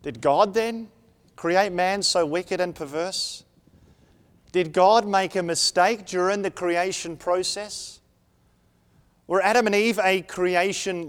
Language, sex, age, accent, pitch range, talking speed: English, male, 30-49, Australian, 140-195 Hz, 130 wpm